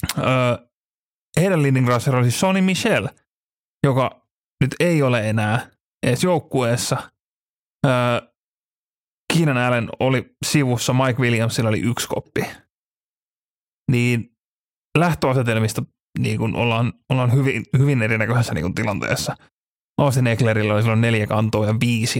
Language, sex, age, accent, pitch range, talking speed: Finnish, male, 30-49, native, 115-140 Hz, 115 wpm